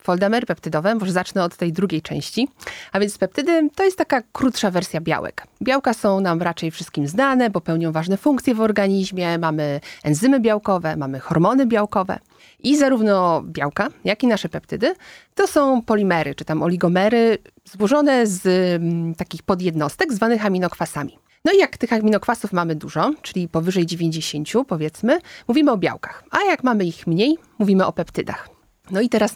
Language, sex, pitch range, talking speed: Polish, female, 170-235 Hz, 160 wpm